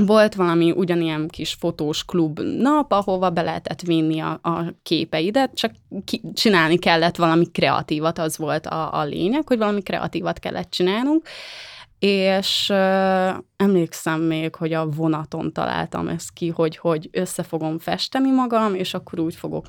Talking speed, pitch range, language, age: 150 wpm, 165-200 Hz, Hungarian, 20-39